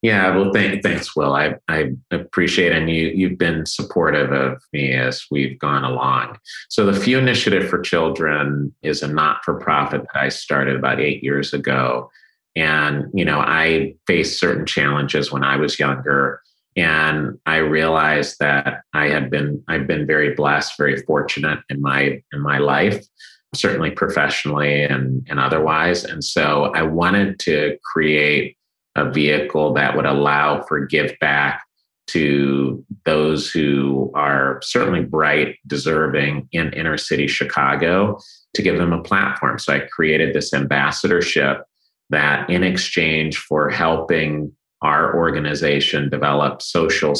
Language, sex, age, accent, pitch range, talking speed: English, male, 30-49, American, 70-80 Hz, 145 wpm